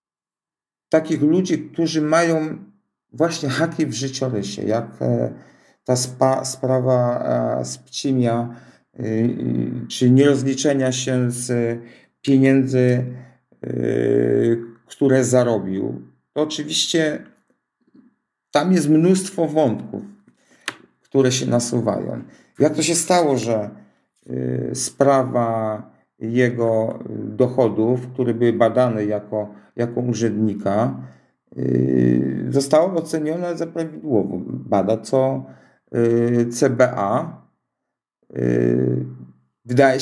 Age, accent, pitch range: 50-69, native, 115-155 Hz